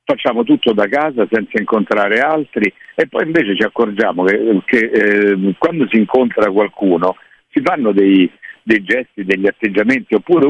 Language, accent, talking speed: Italian, native, 155 wpm